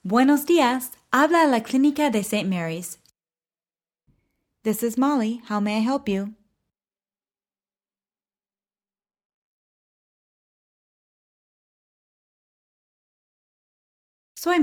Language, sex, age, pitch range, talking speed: English, female, 20-39, 185-265 Hz, 75 wpm